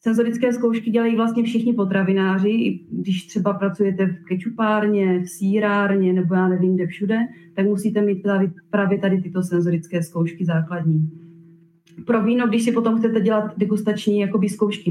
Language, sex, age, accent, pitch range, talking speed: Czech, female, 30-49, native, 170-215 Hz, 145 wpm